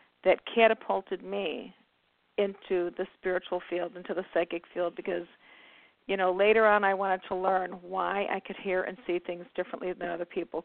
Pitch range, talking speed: 180-210 Hz, 175 wpm